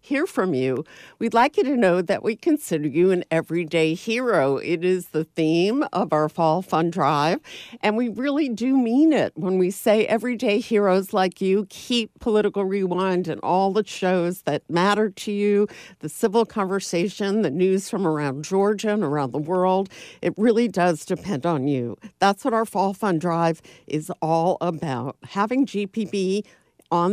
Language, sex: English, female